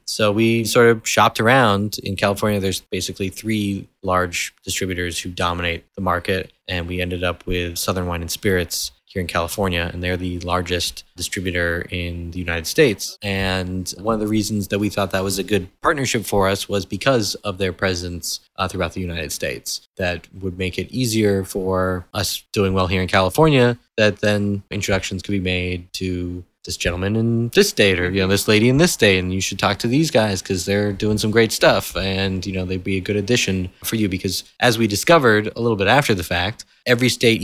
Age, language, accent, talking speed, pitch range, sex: 20-39, English, American, 210 wpm, 90-110 Hz, male